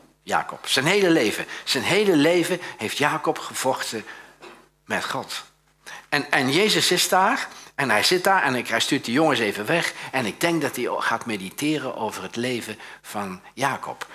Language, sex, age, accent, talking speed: Dutch, male, 60-79, Dutch, 170 wpm